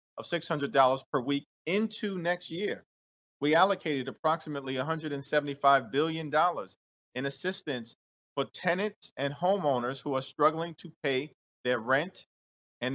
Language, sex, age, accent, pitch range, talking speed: English, male, 50-69, American, 125-155 Hz, 120 wpm